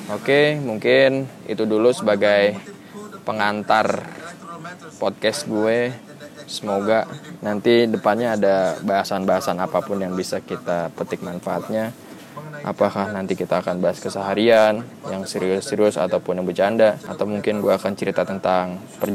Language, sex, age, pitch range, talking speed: Indonesian, male, 20-39, 100-120 Hz, 115 wpm